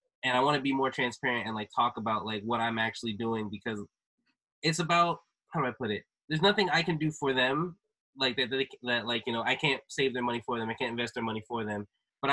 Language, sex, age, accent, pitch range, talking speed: English, male, 20-39, American, 110-130 Hz, 260 wpm